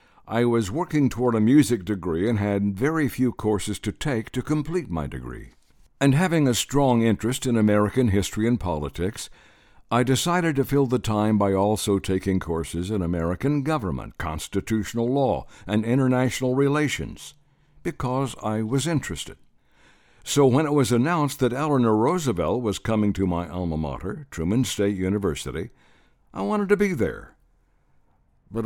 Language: English